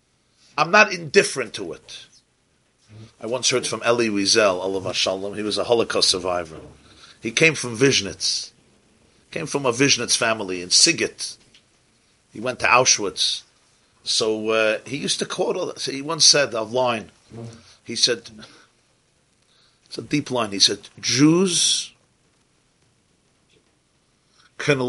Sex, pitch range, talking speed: male, 110-140 Hz, 135 wpm